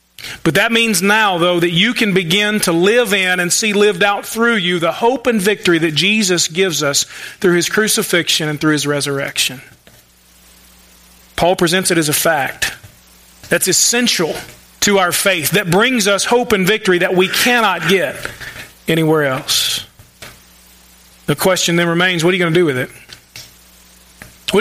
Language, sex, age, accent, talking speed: English, male, 40-59, American, 170 wpm